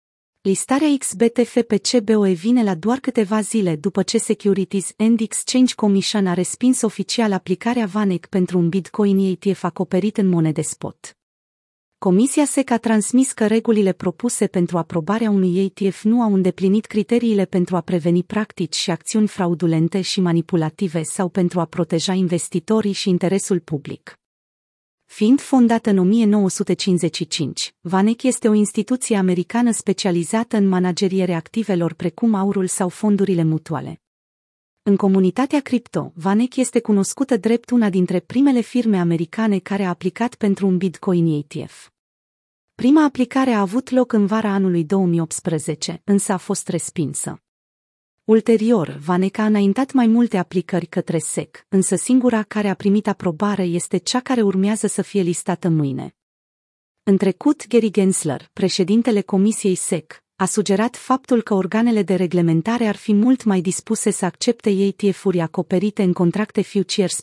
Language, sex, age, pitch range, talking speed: Romanian, female, 30-49, 180-220 Hz, 140 wpm